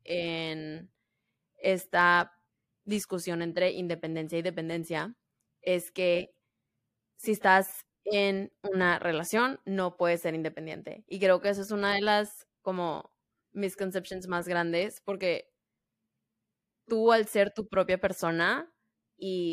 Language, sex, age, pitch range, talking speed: Spanish, female, 20-39, 175-210 Hz, 115 wpm